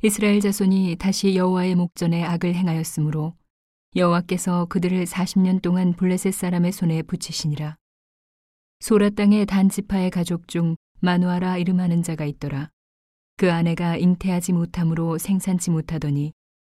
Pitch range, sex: 160-185 Hz, female